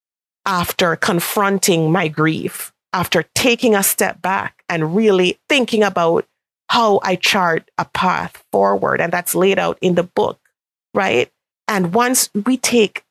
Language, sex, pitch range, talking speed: English, female, 170-210 Hz, 140 wpm